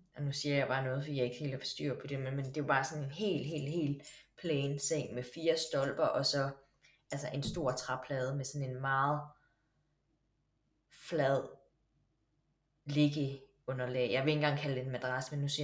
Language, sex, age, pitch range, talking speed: Danish, female, 20-39, 140-155 Hz, 190 wpm